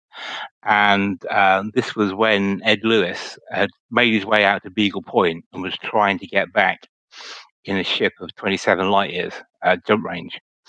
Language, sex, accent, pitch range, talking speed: English, male, British, 95-105 Hz, 180 wpm